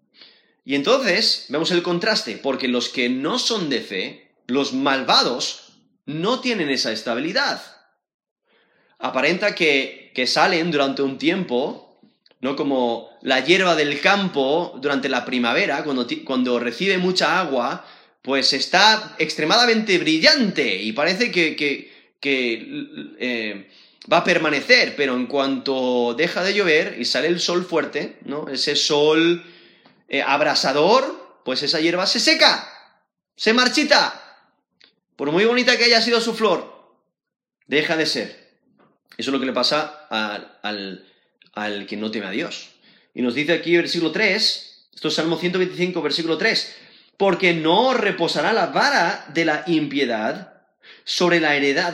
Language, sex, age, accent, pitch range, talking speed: Spanish, male, 30-49, Spanish, 135-195 Hz, 140 wpm